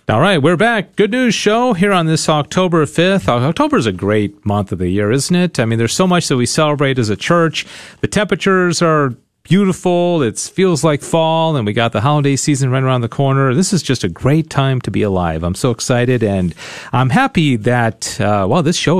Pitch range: 110-160 Hz